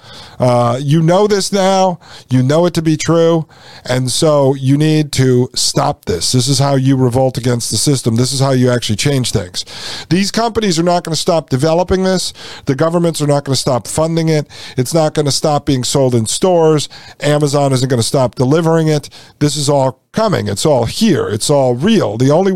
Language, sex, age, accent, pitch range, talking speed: English, male, 50-69, American, 130-175 Hz, 210 wpm